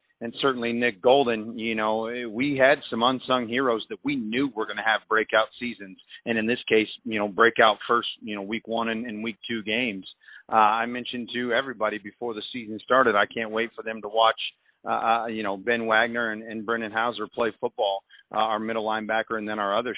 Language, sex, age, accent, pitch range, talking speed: English, male, 40-59, American, 110-130 Hz, 215 wpm